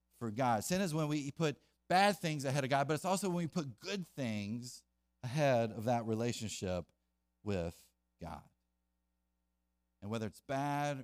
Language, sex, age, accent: English, male, 40-59, American